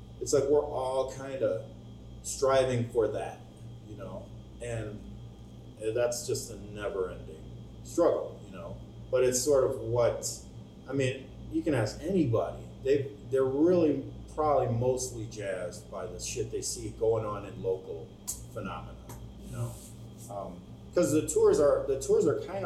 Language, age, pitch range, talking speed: English, 30-49, 115-145 Hz, 150 wpm